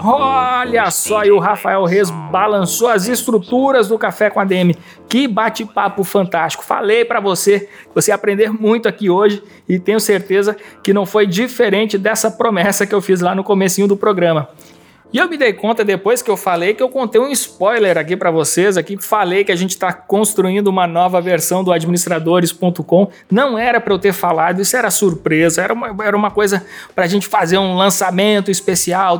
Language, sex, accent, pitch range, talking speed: Portuguese, male, Brazilian, 175-210 Hz, 190 wpm